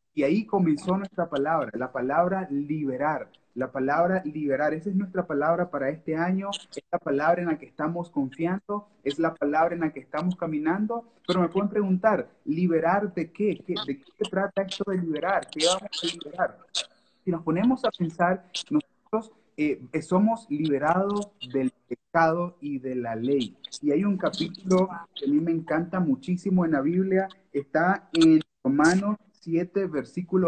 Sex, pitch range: male, 150-200 Hz